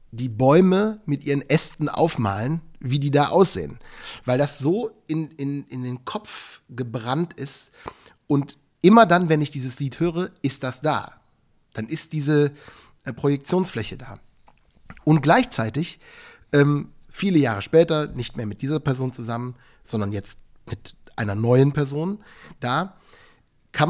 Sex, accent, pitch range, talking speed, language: male, German, 130-160 Hz, 140 wpm, German